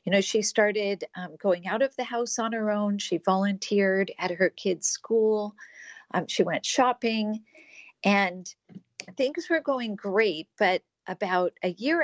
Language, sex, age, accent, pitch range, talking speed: English, female, 50-69, American, 180-220 Hz, 160 wpm